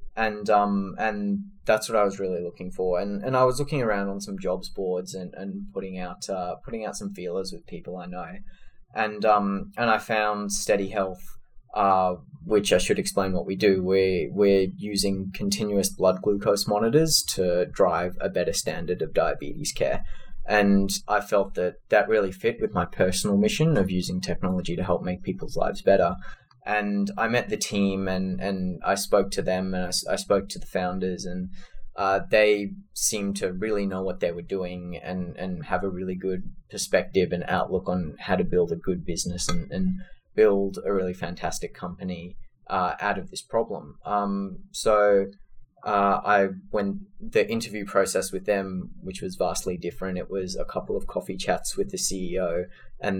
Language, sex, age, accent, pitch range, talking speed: English, male, 20-39, Australian, 90-105 Hz, 185 wpm